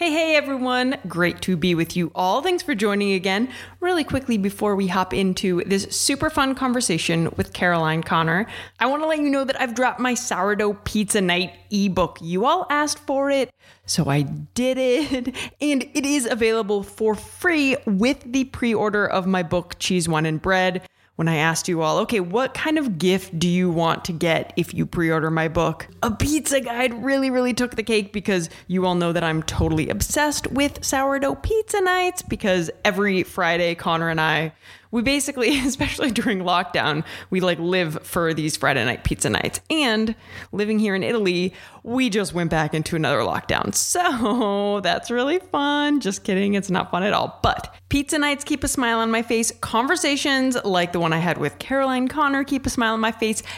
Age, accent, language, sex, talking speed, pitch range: 20-39, American, English, female, 195 wpm, 175-265 Hz